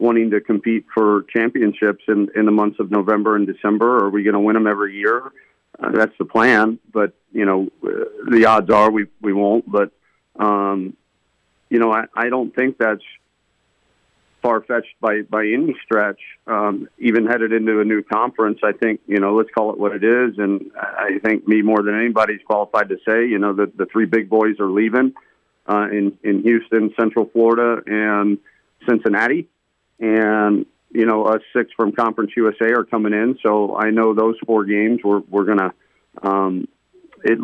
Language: English